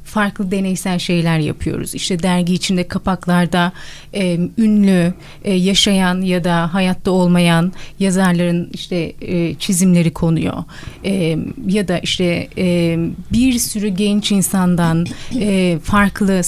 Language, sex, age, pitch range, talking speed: Turkish, female, 30-49, 175-230 Hz, 115 wpm